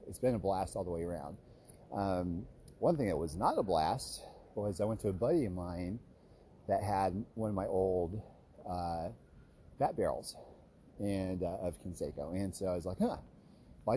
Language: English